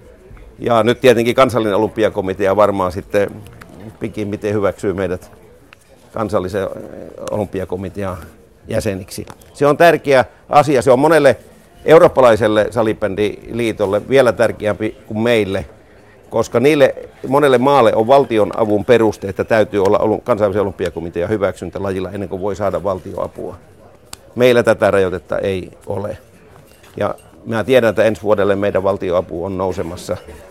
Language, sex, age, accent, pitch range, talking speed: Finnish, male, 50-69, native, 95-120 Hz, 120 wpm